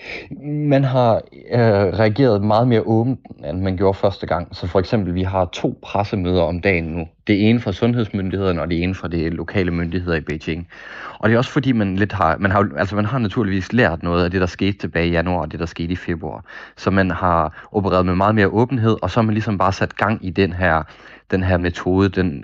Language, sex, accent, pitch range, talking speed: Danish, male, native, 85-105 Hz, 235 wpm